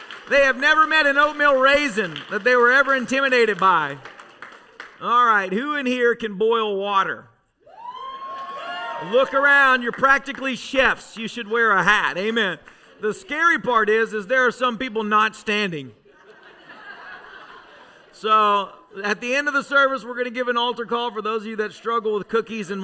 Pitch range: 200-235 Hz